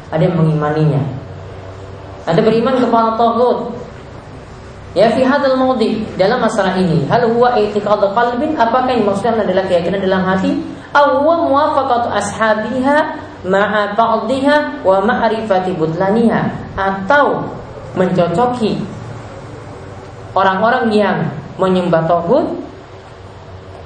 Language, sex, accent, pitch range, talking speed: Indonesian, female, native, 155-235 Hz, 95 wpm